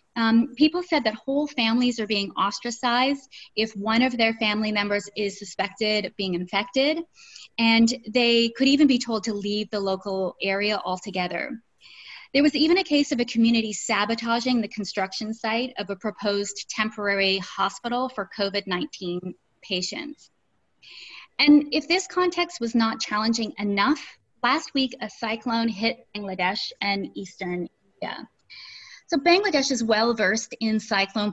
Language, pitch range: English, 205-260 Hz